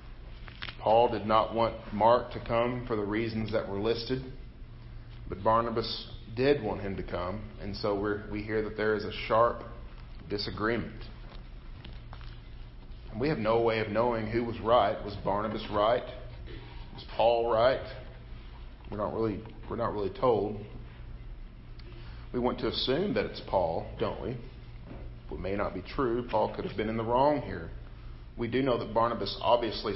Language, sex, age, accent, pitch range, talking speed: English, male, 40-59, American, 100-115 Hz, 165 wpm